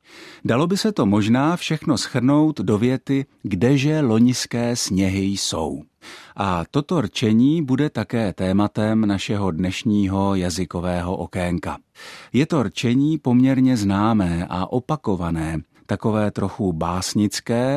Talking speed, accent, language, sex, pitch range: 110 wpm, native, Czech, male, 95-125 Hz